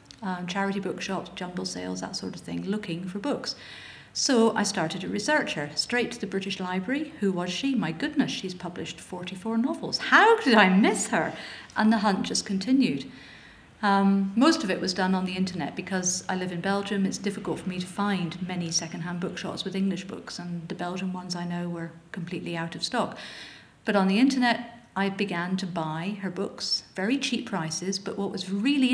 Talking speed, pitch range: 200 wpm, 180-225 Hz